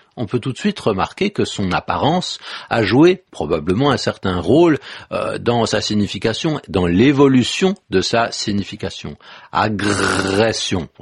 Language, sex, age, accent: French, male, 60-79, French